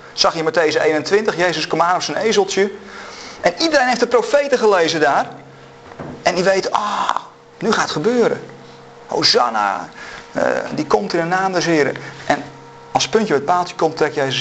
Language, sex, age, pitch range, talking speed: Dutch, male, 40-59, 155-230 Hz, 180 wpm